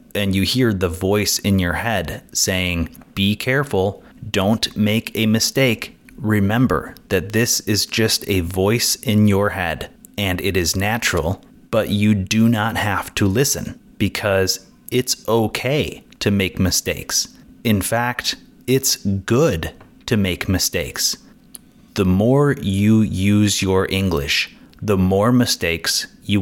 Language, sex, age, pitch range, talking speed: English, male, 30-49, 95-115 Hz, 135 wpm